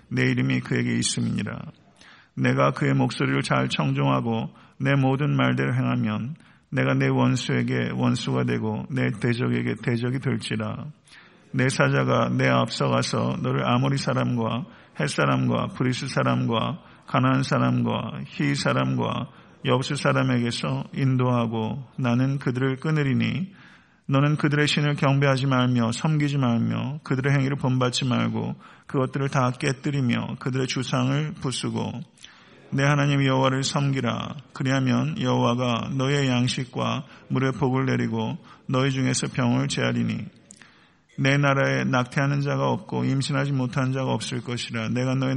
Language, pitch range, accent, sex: Korean, 115-135 Hz, native, male